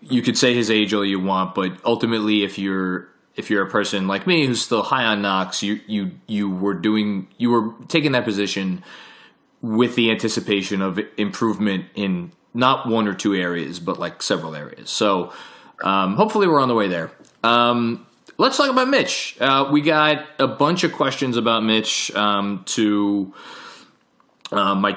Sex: male